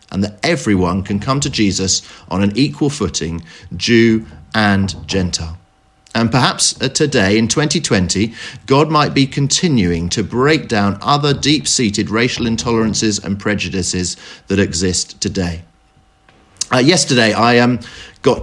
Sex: male